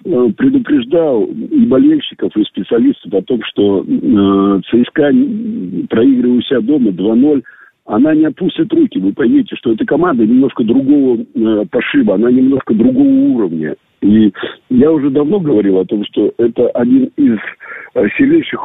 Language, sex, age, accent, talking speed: Russian, male, 50-69, native, 130 wpm